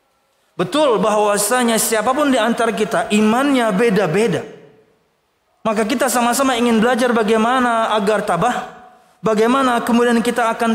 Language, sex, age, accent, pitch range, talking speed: Indonesian, male, 20-39, native, 215-255 Hz, 105 wpm